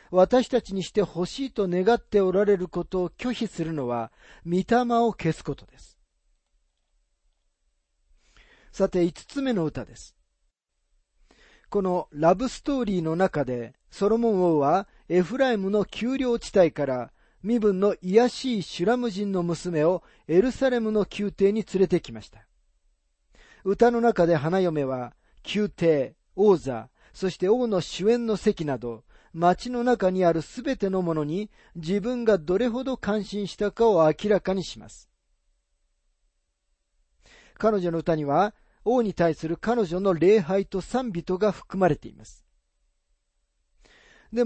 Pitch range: 145-215 Hz